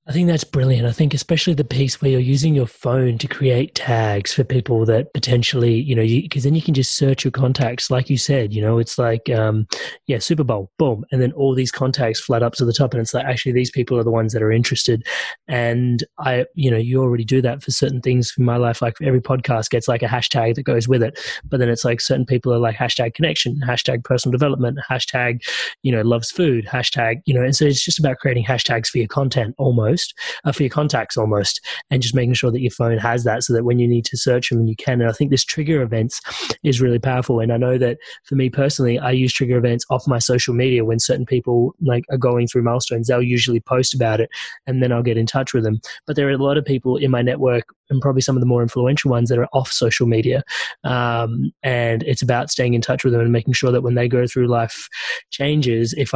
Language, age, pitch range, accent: English, 20-39, 120-135 Hz, Australian